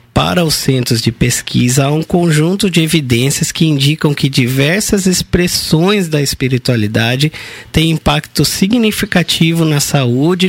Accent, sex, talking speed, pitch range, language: Brazilian, male, 125 wpm, 125-165 Hz, Portuguese